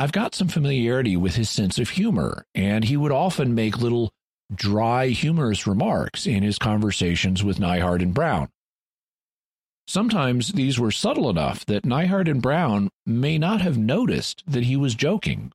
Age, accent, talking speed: 50-69, American, 160 wpm